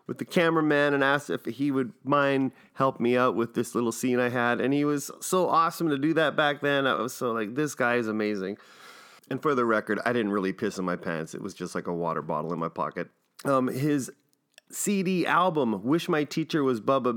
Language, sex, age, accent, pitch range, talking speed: English, male, 30-49, American, 120-160 Hz, 230 wpm